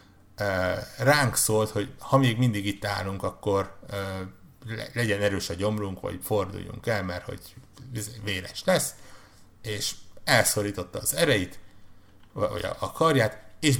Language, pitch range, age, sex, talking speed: Hungarian, 95-110 Hz, 60-79, male, 120 wpm